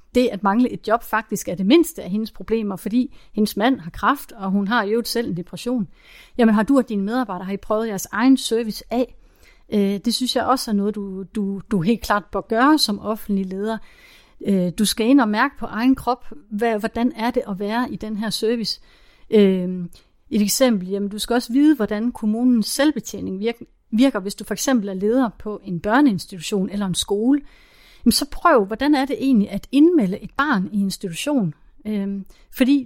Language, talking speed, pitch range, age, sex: Danish, 195 wpm, 200-250 Hz, 30-49, female